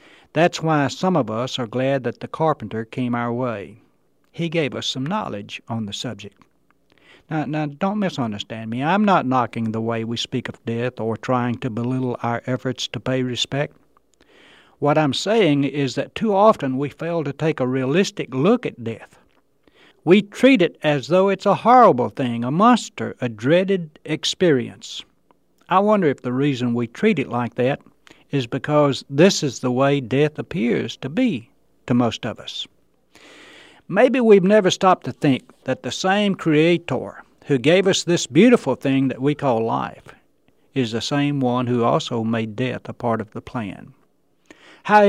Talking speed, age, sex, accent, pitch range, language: 175 wpm, 60-79, male, American, 125-160 Hz, English